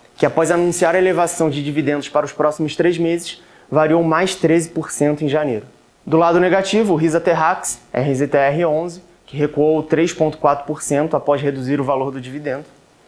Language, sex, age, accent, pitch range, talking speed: Portuguese, male, 20-39, Brazilian, 145-170 Hz, 150 wpm